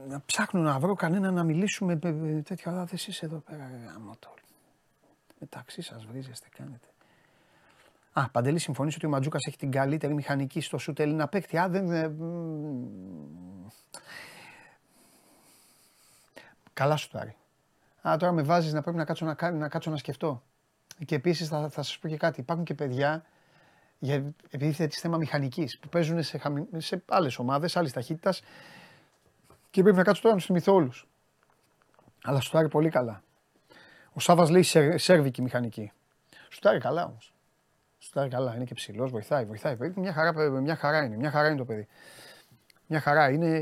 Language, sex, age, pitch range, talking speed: Greek, male, 30-49, 130-165 Hz, 160 wpm